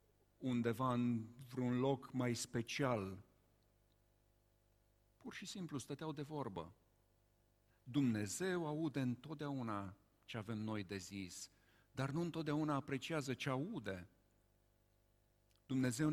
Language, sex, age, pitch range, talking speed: Romanian, male, 50-69, 110-150 Hz, 100 wpm